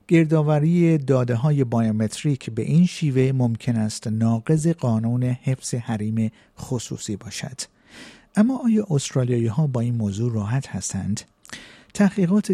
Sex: male